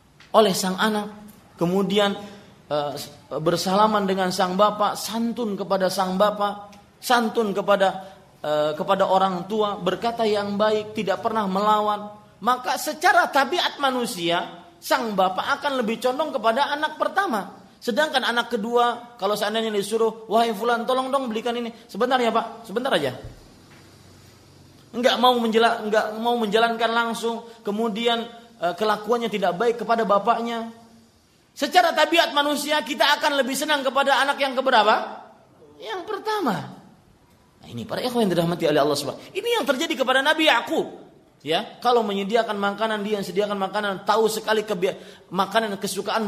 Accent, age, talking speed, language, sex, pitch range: native, 30-49, 135 wpm, Indonesian, male, 205-260 Hz